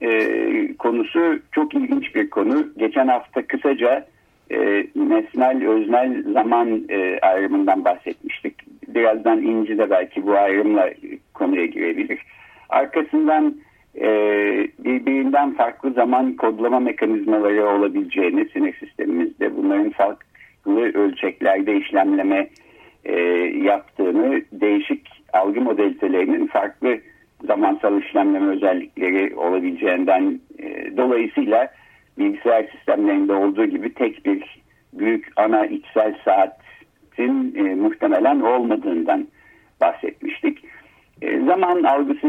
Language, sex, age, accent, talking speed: Turkish, male, 60-79, native, 95 wpm